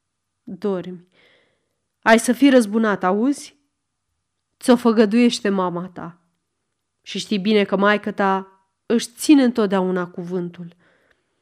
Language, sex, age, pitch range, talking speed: Romanian, female, 30-49, 185-250 Hz, 105 wpm